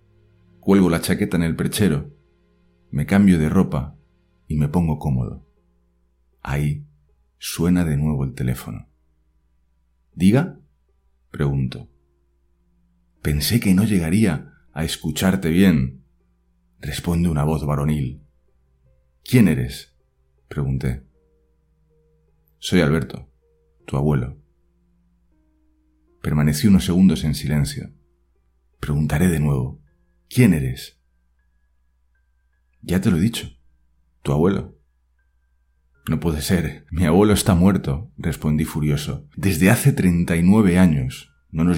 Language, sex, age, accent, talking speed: Spanish, male, 40-59, Spanish, 105 wpm